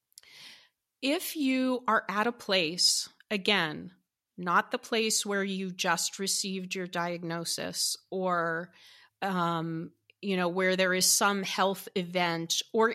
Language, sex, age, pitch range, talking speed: English, female, 30-49, 175-210 Hz, 125 wpm